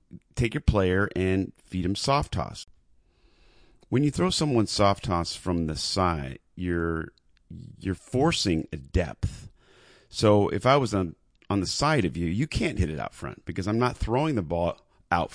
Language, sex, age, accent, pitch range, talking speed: English, male, 40-59, American, 90-115 Hz, 175 wpm